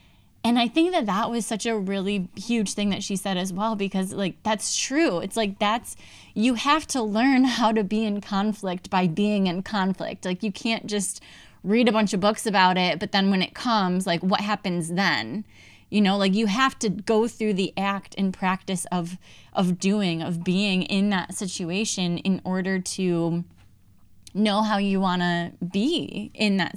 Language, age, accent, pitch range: English, 10-29, American, 185-220 Hz